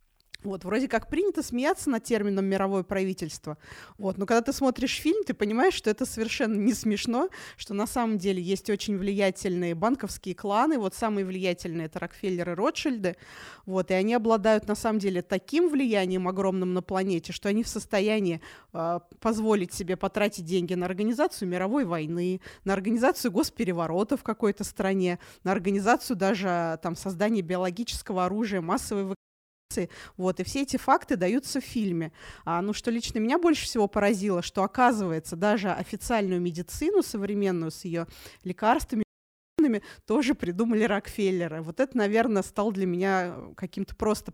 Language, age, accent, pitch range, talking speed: Russian, 20-39, native, 185-230 Hz, 150 wpm